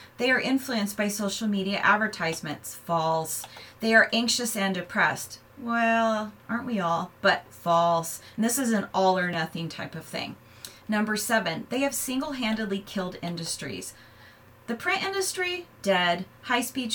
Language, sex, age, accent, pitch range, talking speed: English, female, 30-49, American, 170-235 Hz, 150 wpm